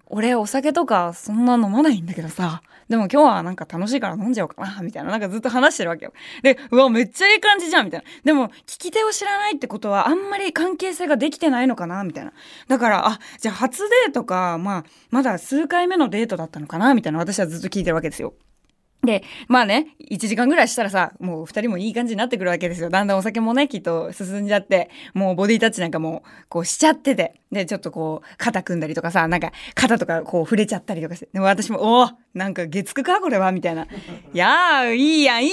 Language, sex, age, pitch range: Japanese, female, 20-39, 180-275 Hz